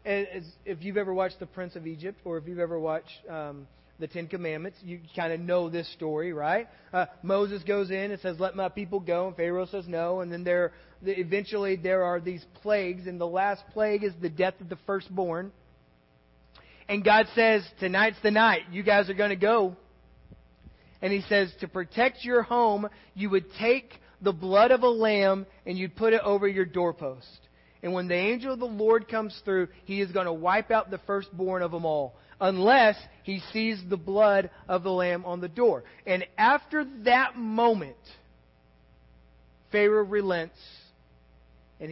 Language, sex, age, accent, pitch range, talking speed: English, male, 30-49, American, 150-200 Hz, 185 wpm